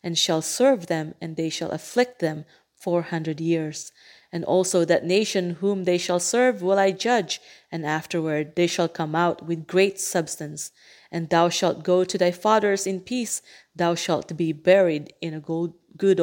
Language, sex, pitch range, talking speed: English, female, 165-190 Hz, 180 wpm